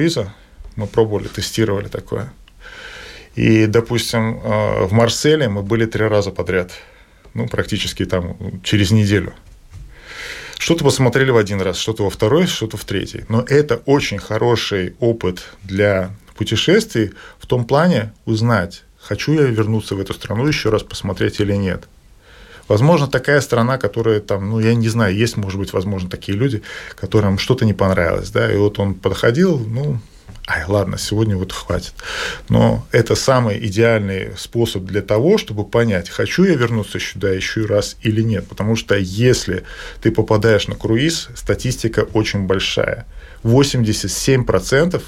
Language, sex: Russian, male